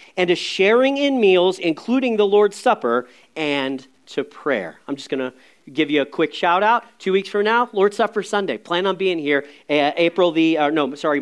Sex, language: male, English